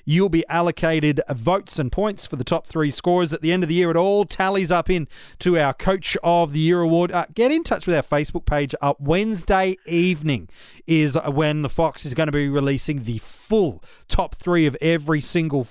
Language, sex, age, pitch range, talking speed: English, male, 30-49, 145-180 Hz, 215 wpm